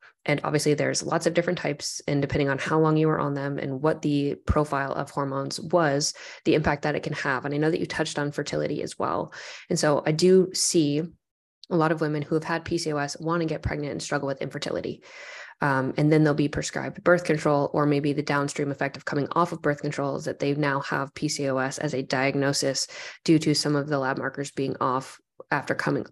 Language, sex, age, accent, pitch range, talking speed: English, female, 20-39, American, 145-170 Hz, 230 wpm